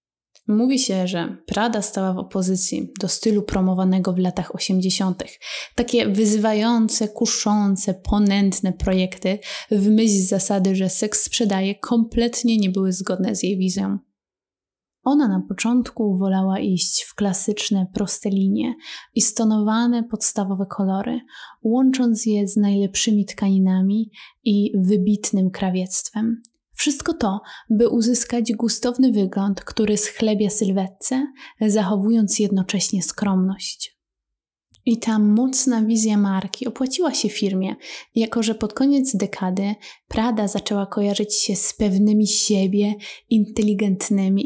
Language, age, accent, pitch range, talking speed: Polish, 20-39, native, 195-225 Hz, 115 wpm